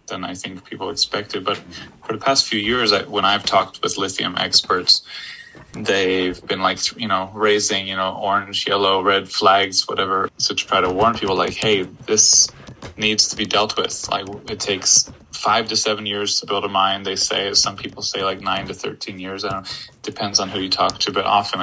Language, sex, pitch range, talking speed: English, male, 95-105 Hz, 215 wpm